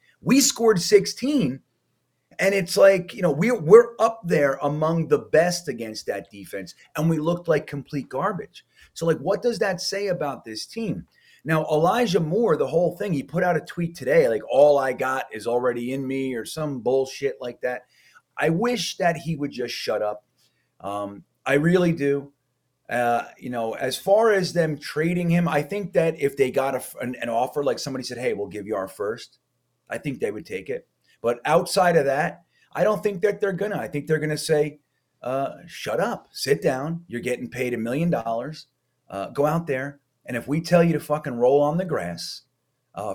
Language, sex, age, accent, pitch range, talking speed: English, male, 30-49, American, 130-200 Hz, 200 wpm